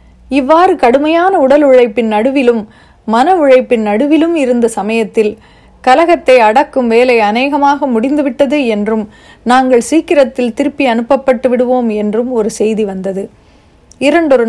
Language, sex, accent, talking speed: Tamil, female, native, 110 wpm